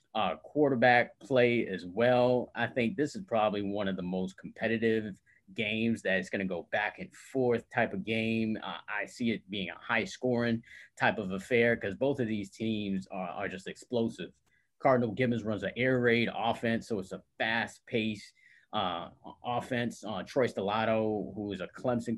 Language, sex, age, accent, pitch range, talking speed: English, male, 30-49, American, 100-120 Hz, 180 wpm